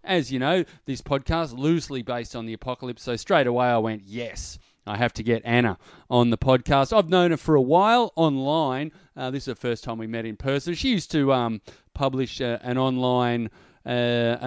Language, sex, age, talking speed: English, male, 30-49, 205 wpm